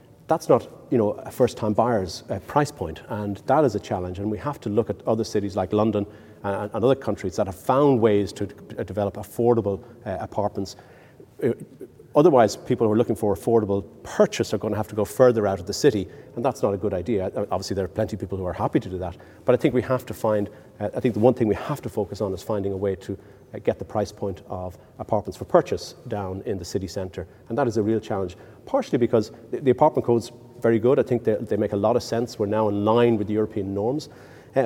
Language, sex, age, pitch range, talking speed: English, male, 40-59, 100-120 Hz, 245 wpm